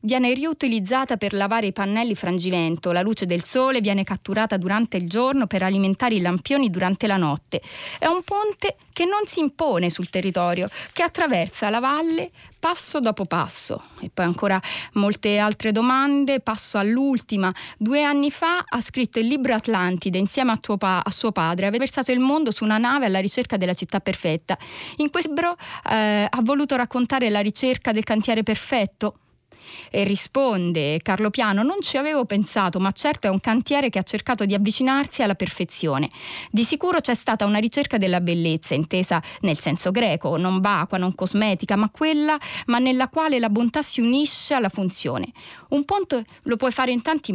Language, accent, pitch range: Italian, native, 190-265 Hz